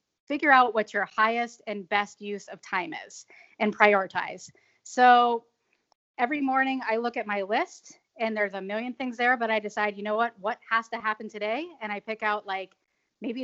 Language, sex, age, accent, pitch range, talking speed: English, female, 20-39, American, 210-245 Hz, 195 wpm